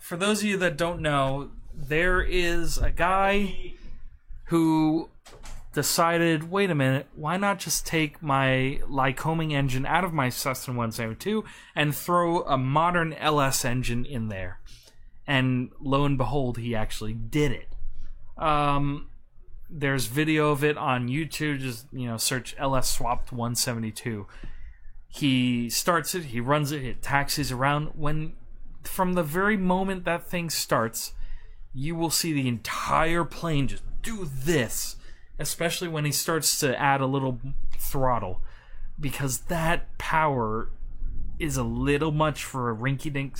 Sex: male